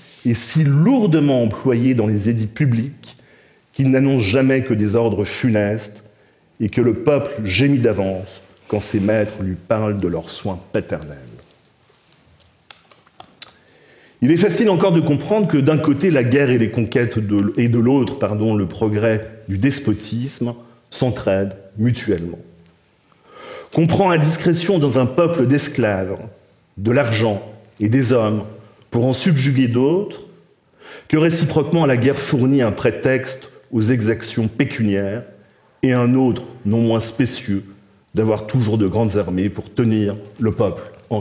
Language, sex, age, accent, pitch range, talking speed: French, male, 40-59, French, 105-140 Hz, 145 wpm